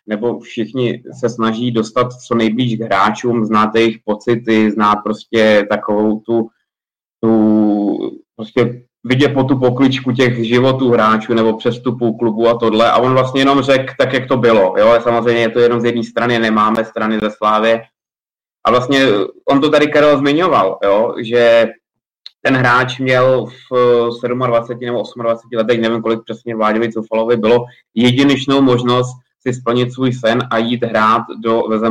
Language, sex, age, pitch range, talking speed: Czech, male, 20-39, 110-130 Hz, 160 wpm